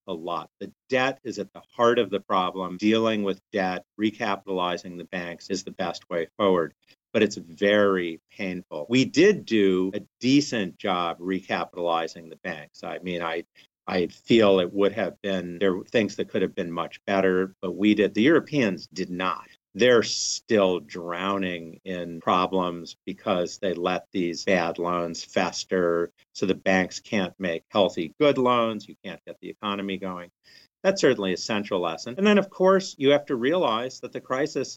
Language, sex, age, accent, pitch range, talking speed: English, male, 50-69, American, 90-105 Hz, 175 wpm